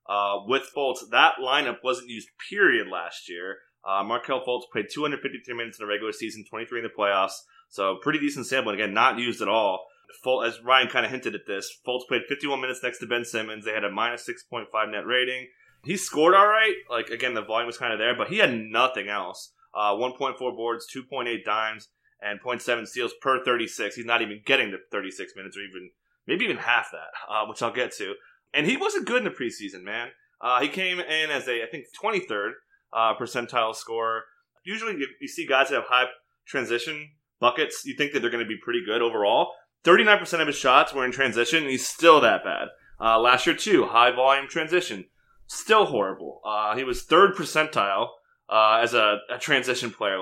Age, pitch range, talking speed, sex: 20-39, 115-150 Hz, 205 wpm, male